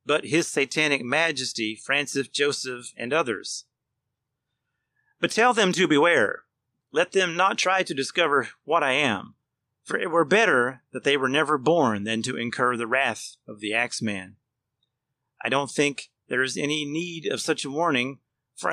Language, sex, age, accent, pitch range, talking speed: English, male, 30-49, American, 125-165 Hz, 165 wpm